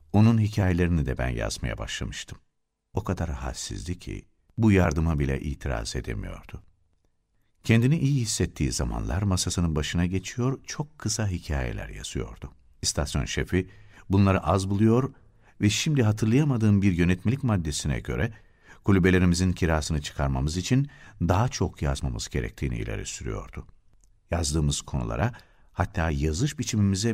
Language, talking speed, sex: Turkish, 115 wpm, male